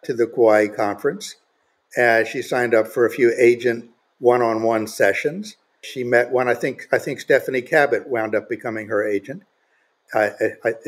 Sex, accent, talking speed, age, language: male, American, 160 wpm, 60-79, English